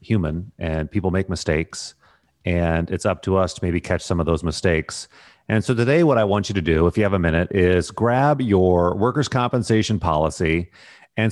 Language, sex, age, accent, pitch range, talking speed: English, male, 30-49, American, 85-110 Hz, 200 wpm